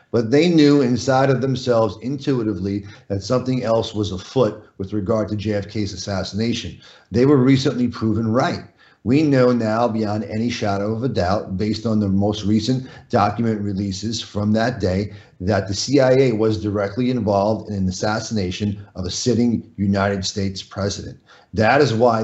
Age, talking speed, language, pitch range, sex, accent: 40-59, 160 wpm, English, 100-120 Hz, male, American